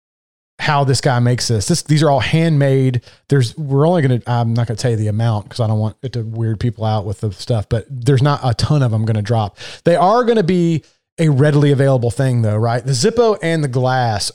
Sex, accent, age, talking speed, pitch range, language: male, American, 30-49, 255 wpm, 115-145 Hz, English